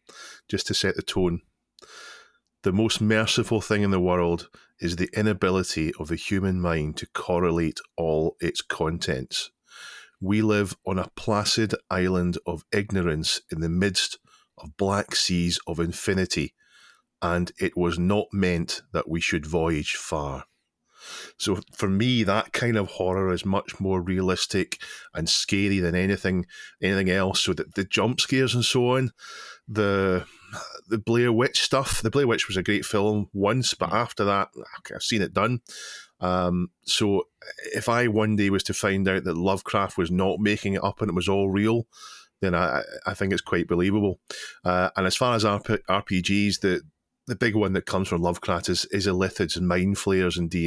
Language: English